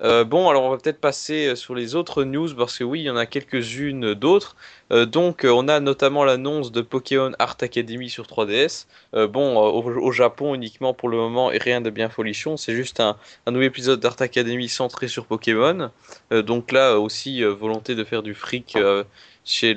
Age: 20-39